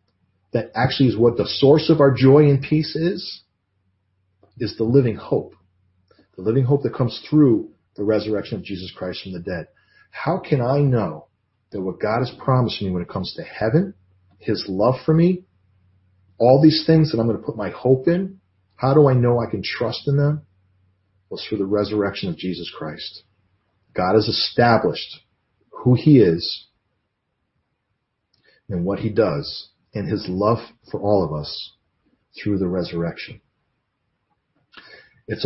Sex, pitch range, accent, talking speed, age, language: male, 95-130 Hz, American, 165 wpm, 40-59, English